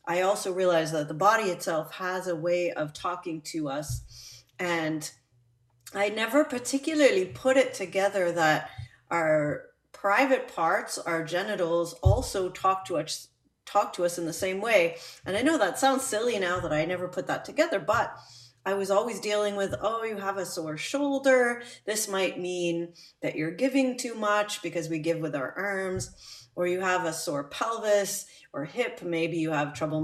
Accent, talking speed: American, 180 wpm